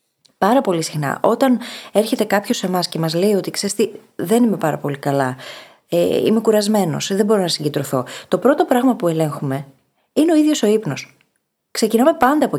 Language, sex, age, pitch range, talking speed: Greek, female, 20-39, 170-240 Hz, 180 wpm